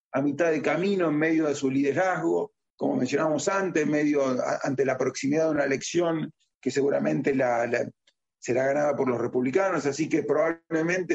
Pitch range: 135-175 Hz